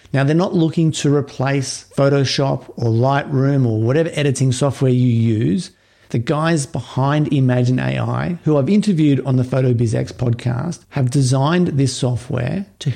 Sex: male